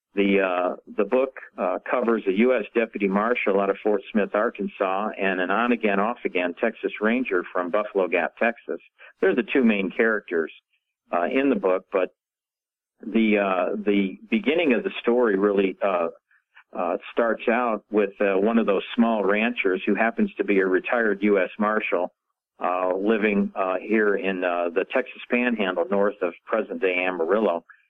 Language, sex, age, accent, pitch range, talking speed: English, male, 50-69, American, 95-105 Hz, 160 wpm